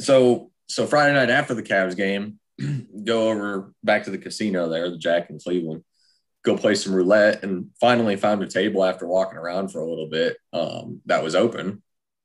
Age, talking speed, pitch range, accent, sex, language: 30-49, 190 wpm, 85-110 Hz, American, male, English